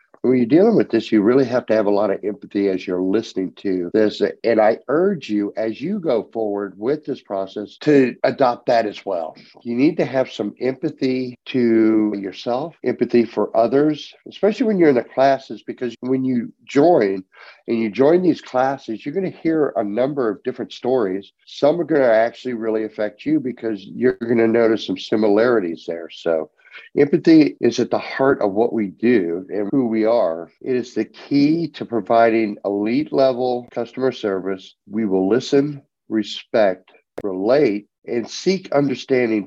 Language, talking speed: English, 180 wpm